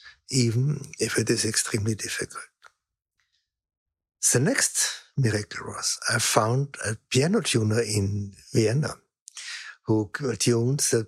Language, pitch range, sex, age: English, 105-130 Hz, male, 60-79